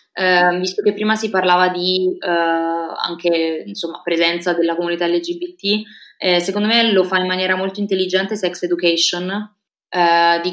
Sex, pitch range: female, 170-200 Hz